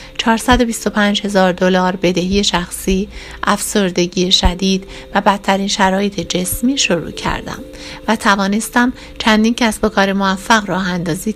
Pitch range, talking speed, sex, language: 190-230 Hz, 110 wpm, female, Persian